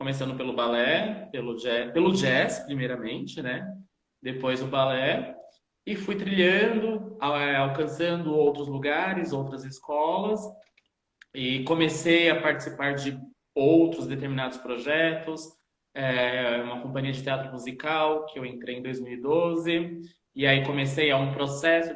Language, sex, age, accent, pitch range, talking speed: Portuguese, male, 20-39, Brazilian, 130-170 Hz, 125 wpm